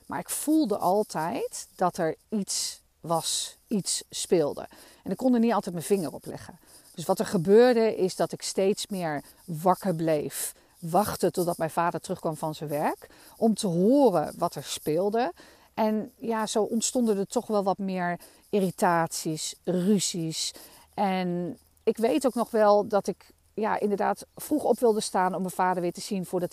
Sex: female